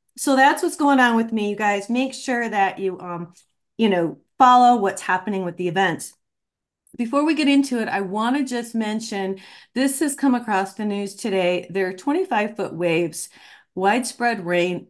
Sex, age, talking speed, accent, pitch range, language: female, 40-59, 180 wpm, American, 185-230 Hz, English